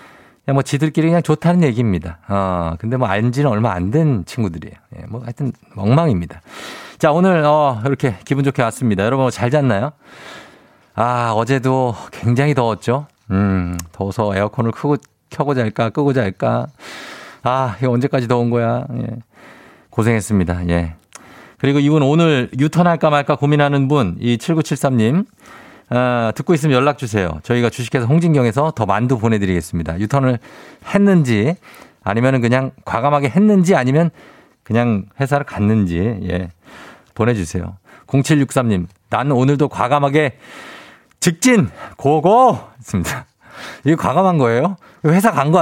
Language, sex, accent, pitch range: Korean, male, native, 105-145 Hz